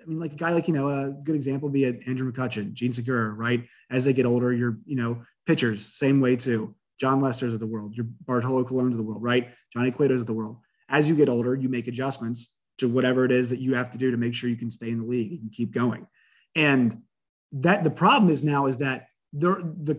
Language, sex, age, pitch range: English, male, 30-49, 125-170 Hz